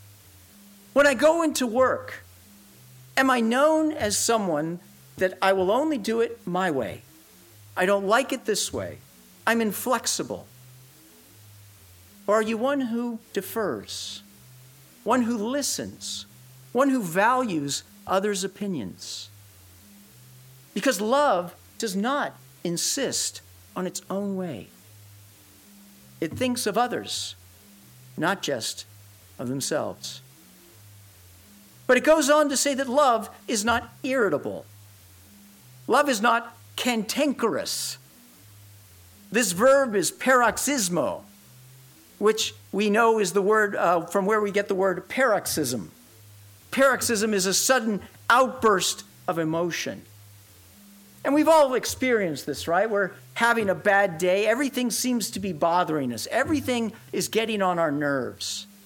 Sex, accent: male, American